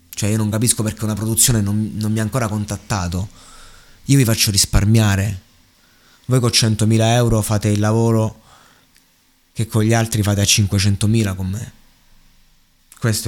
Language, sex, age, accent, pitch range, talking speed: Italian, male, 20-39, native, 95-115 Hz, 155 wpm